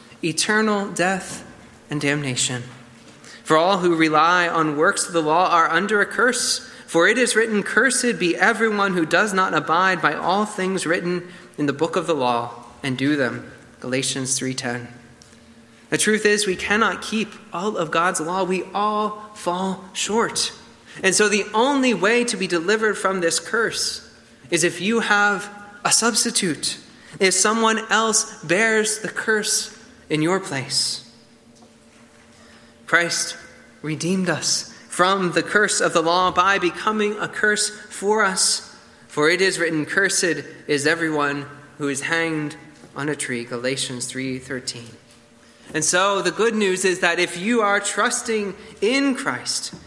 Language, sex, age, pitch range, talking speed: English, male, 20-39, 140-205 Hz, 150 wpm